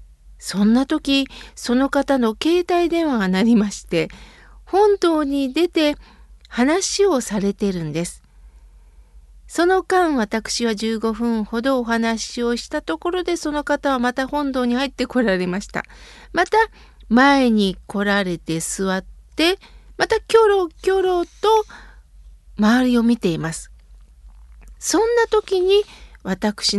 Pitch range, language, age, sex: 195-315 Hz, Japanese, 50-69, female